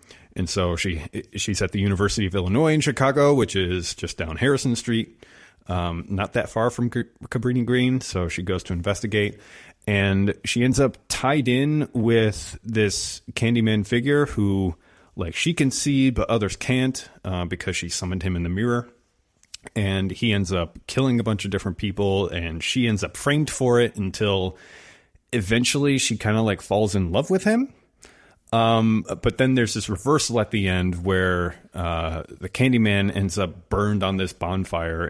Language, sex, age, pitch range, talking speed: English, male, 30-49, 95-120 Hz, 175 wpm